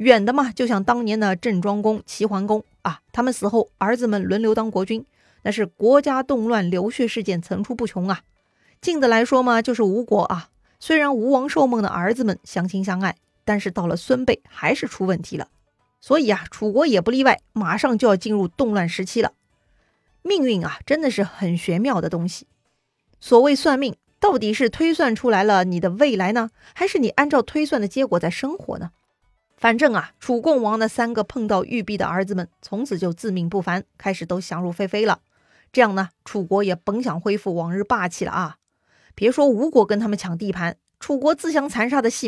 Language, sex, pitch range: Chinese, female, 190-250 Hz